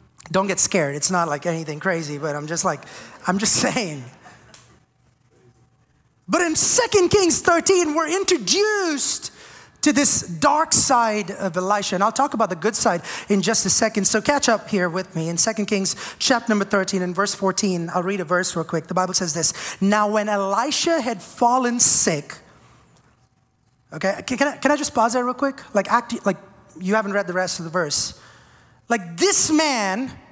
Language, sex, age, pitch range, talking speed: English, male, 30-49, 200-320 Hz, 185 wpm